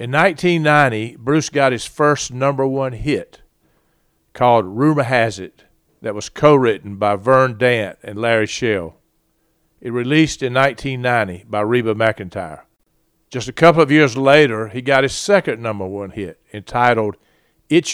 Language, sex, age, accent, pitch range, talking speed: English, male, 50-69, American, 110-135 Hz, 145 wpm